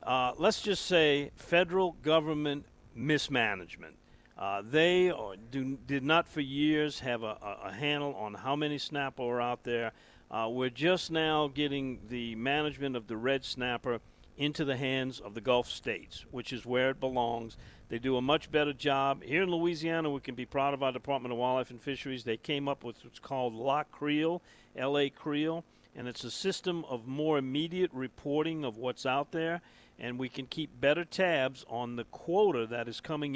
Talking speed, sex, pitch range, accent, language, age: 185 wpm, male, 120-155 Hz, American, English, 50-69